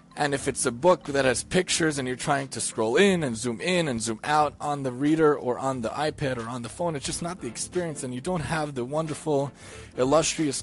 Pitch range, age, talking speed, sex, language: 130-160 Hz, 30-49, 245 wpm, male, English